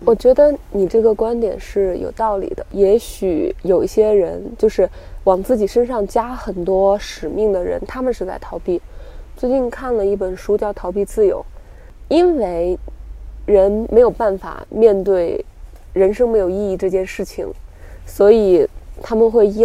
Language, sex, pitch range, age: Chinese, female, 175-225 Hz, 20-39